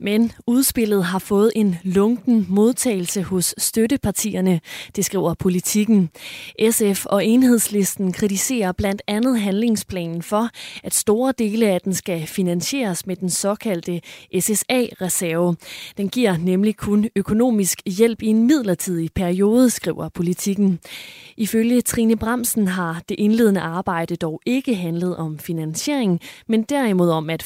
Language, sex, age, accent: Danish, female, 20-39, native